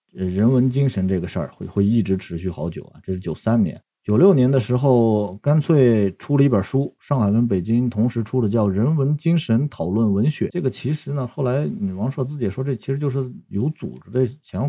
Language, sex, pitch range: Chinese, male, 95-130 Hz